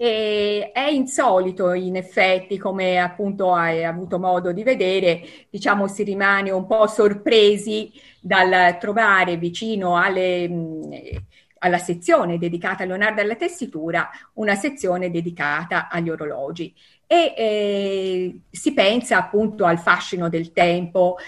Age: 50-69